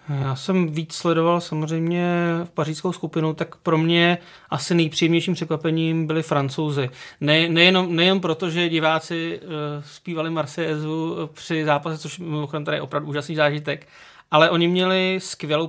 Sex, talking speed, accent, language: male, 145 wpm, native, Czech